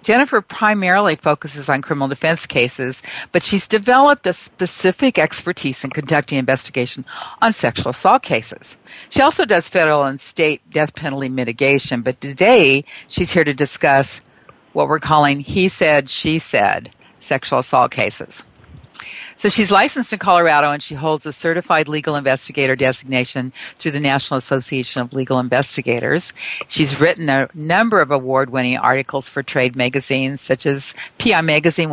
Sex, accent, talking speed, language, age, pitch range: female, American, 150 wpm, English, 50-69, 130-160 Hz